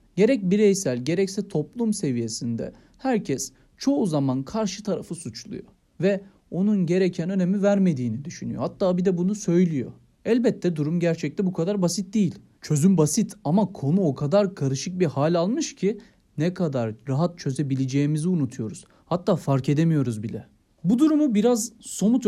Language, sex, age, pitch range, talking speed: Turkish, male, 40-59, 145-205 Hz, 145 wpm